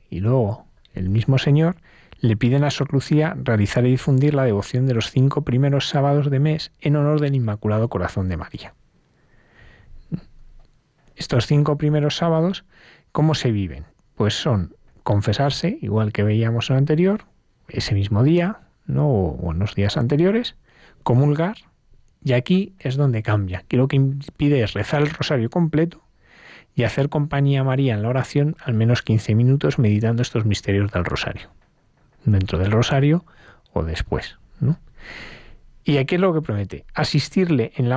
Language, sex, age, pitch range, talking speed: Spanish, male, 40-59, 105-145 Hz, 160 wpm